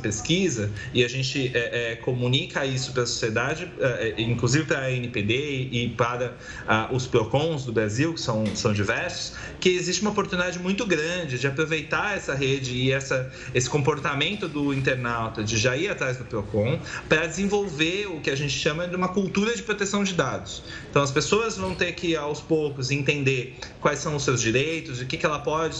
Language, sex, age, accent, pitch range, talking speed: Portuguese, male, 30-49, Brazilian, 120-165 Hz, 190 wpm